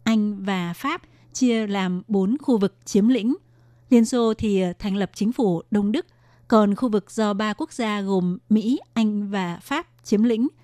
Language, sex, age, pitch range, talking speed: Vietnamese, female, 20-39, 195-230 Hz, 185 wpm